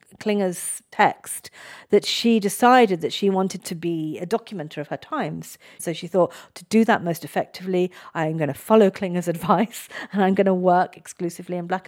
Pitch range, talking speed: 160-205 Hz, 185 wpm